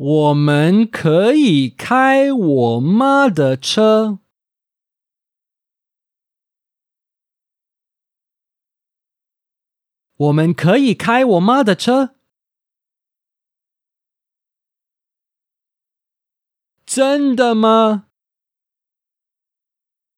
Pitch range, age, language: 155-250 Hz, 40-59, English